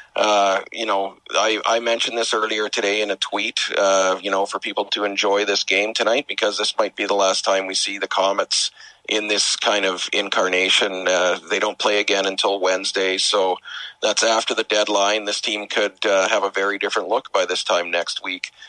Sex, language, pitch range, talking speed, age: male, English, 95-105 Hz, 205 wpm, 40-59